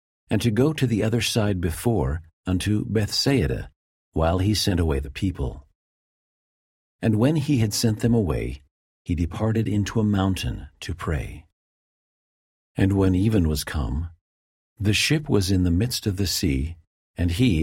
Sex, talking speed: male, 155 wpm